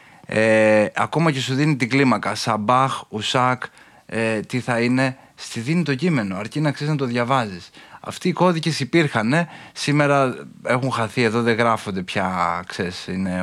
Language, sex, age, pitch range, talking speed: Greek, male, 20-39, 105-130 Hz, 165 wpm